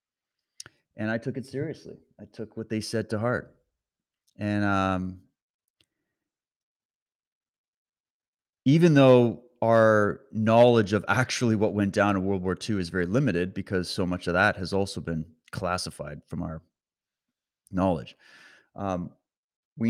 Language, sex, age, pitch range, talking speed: English, male, 30-49, 100-130 Hz, 135 wpm